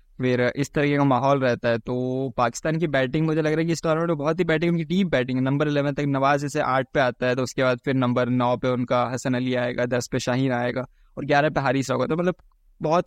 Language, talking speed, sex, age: Hindi, 265 wpm, male, 20-39